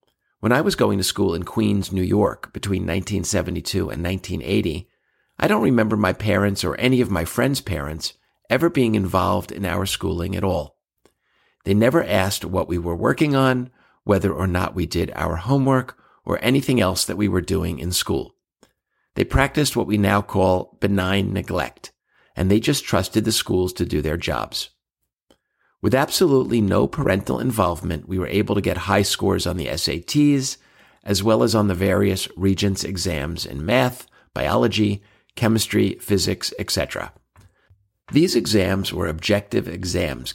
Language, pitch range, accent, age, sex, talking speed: English, 90-110 Hz, American, 50-69, male, 160 wpm